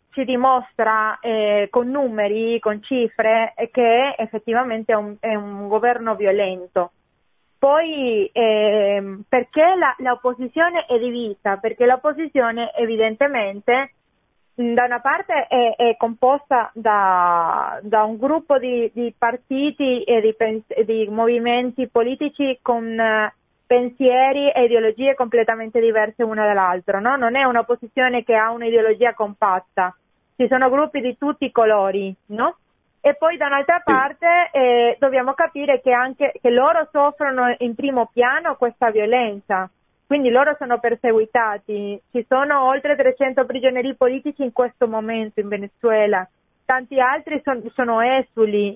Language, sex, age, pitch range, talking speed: Italian, female, 20-39, 220-265 Hz, 135 wpm